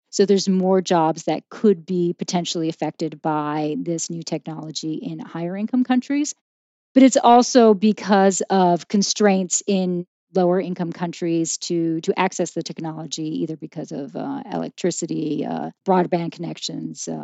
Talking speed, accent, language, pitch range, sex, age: 140 wpm, American, English, 170-215 Hz, female, 40-59